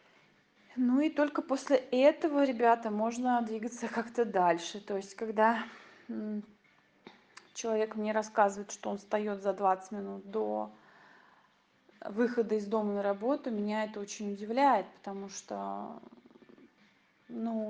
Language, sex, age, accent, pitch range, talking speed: Russian, female, 20-39, native, 205-245 Hz, 120 wpm